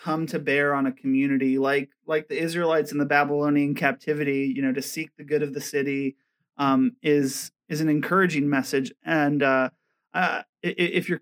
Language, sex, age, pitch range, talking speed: English, male, 30-49, 135-170 Hz, 180 wpm